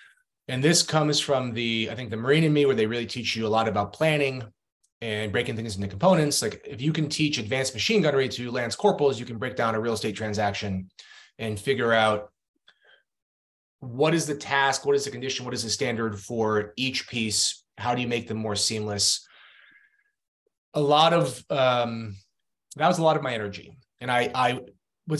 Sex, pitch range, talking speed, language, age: male, 115-150 Hz, 200 wpm, English, 30-49